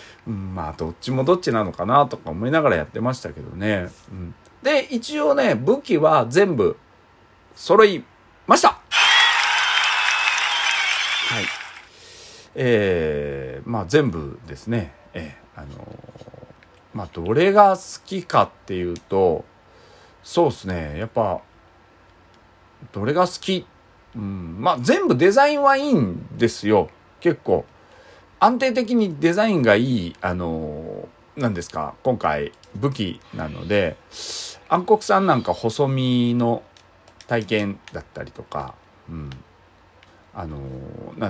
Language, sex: Japanese, male